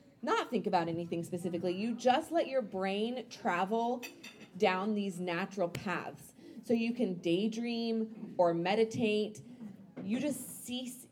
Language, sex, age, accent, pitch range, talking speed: English, female, 20-39, American, 185-230 Hz, 130 wpm